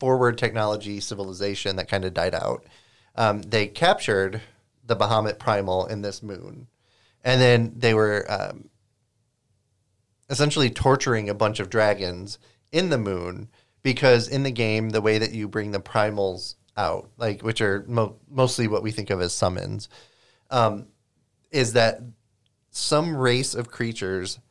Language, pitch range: English, 100-120 Hz